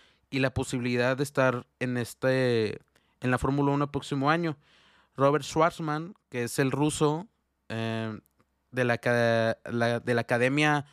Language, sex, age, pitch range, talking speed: Spanish, male, 20-39, 120-140 Hz, 150 wpm